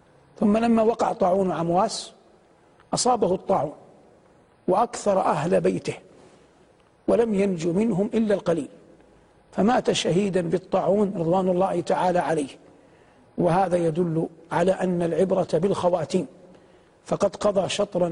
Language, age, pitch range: Arabic, 50-69, 180-210 Hz